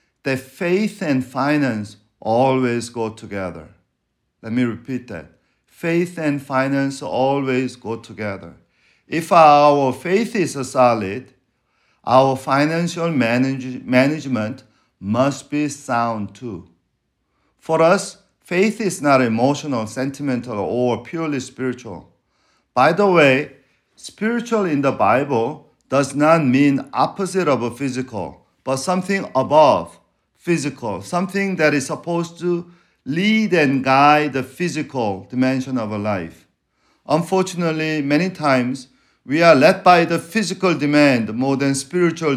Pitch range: 120-160 Hz